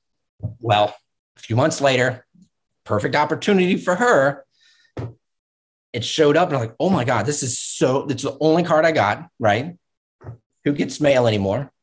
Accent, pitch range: American, 115-160 Hz